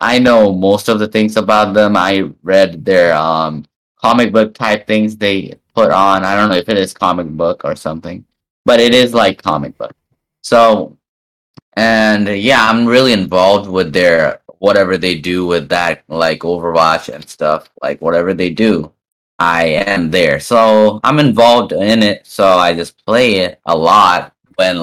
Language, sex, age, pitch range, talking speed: English, male, 10-29, 90-115 Hz, 175 wpm